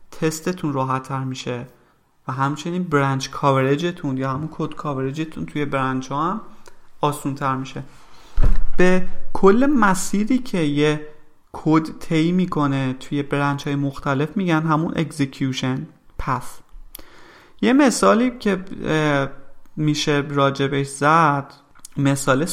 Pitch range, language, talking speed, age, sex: 135-170 Hz, Persian, 110 wpm, 30-49, male